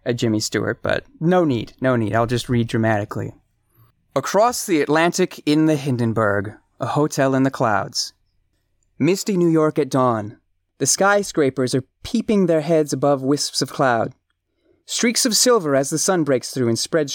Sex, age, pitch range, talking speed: male, 30-49, 120-165 Hz, 170 wpm